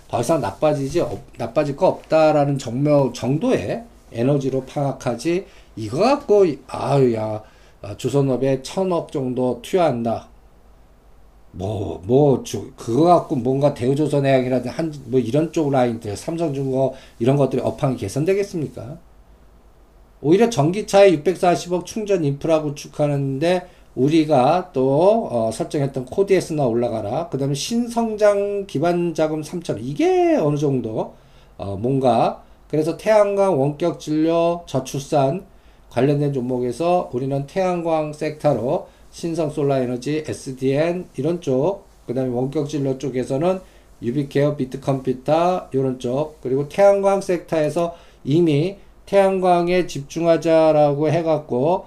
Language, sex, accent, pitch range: Korean, male, native, 130-170 Hz